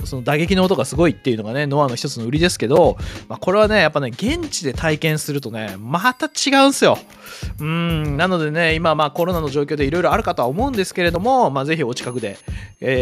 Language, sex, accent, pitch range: Japanese, male, native, 125-170 Hz